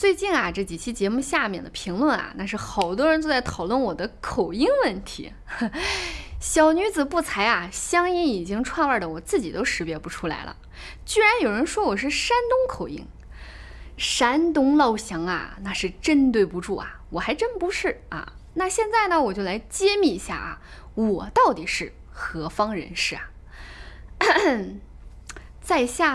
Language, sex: Chinese, female